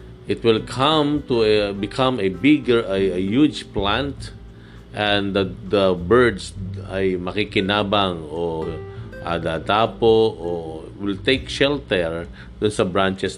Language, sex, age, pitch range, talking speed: Filipino, male, 50-69, 95-130 Hz, 115 wpm